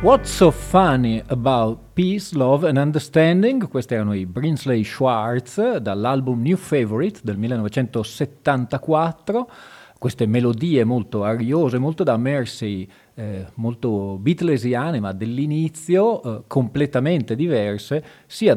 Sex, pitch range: male, 110-145 Hz